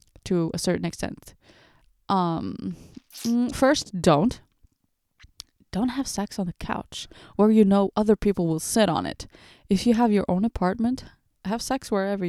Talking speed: 150 wpm